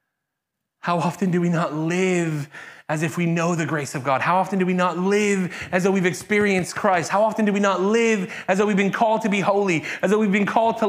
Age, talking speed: 30-49, 250 wpm